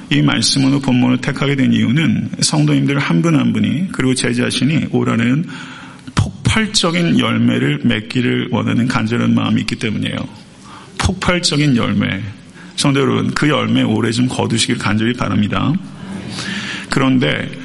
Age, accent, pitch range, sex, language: 40-59, native, 115-140 Hz, male, Korean